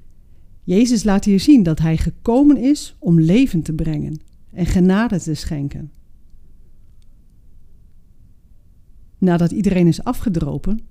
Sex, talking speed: female, 110 wpm